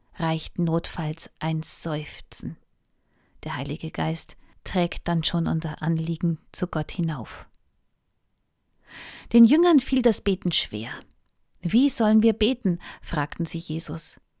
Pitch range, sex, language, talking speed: 165-220 Hz, female, German, 115 wpm